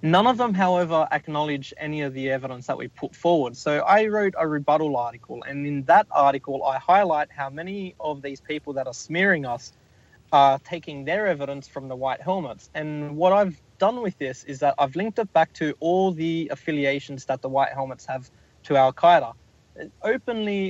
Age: 20-39